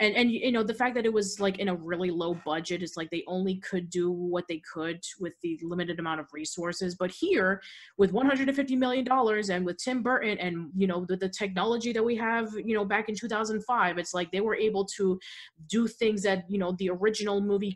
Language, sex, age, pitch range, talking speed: English, female, 20-39, 175-215 Hz, 225 wpm